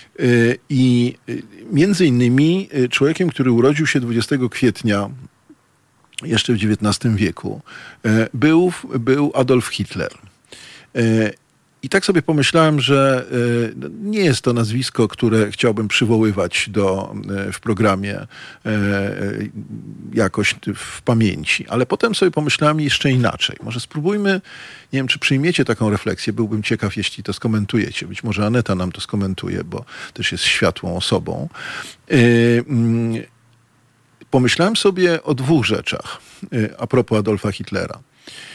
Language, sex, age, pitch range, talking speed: Polish, male, 50-69, 110-140 Hz, 115 wpm